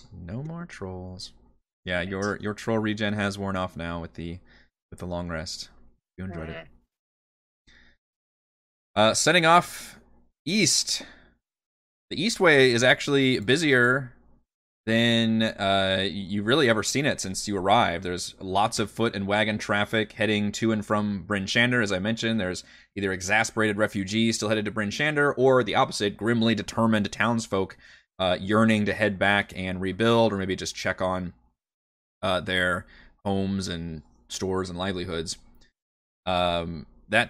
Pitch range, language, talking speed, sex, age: 90-115 Hz, English, 150 wpm, male, 20-39